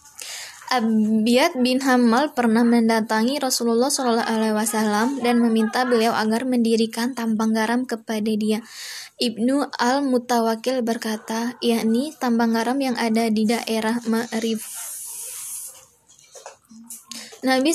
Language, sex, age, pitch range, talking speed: Indonesian, female, 10-29, 225-255 Hz, 95 wpm